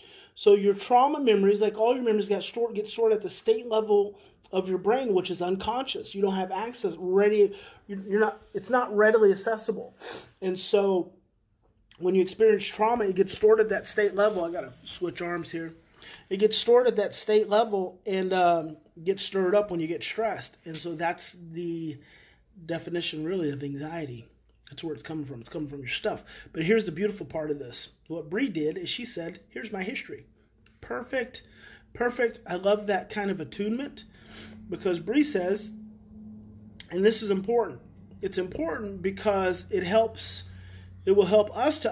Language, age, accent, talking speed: English, 30-49, American, 180 wpm